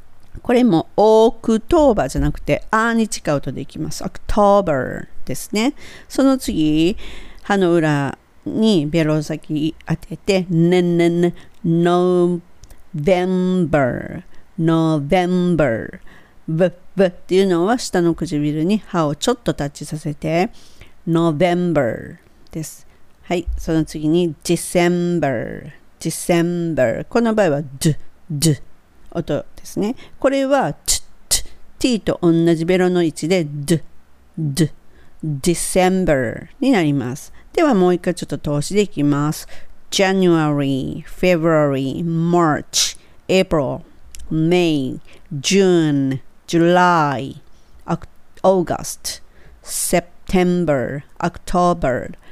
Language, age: Japanese, 40-59